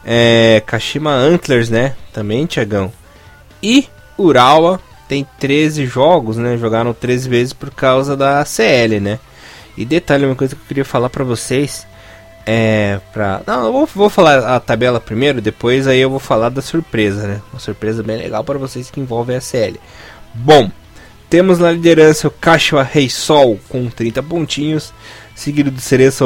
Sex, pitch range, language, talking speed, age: male, 110-140 Hz, Portuguese, 160 wpm, 20-39